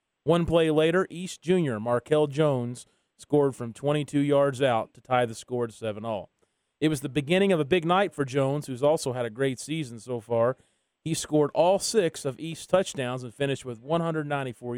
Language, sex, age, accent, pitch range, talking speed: English, male, 30-49, American, 120-155 Hz, 190 wpm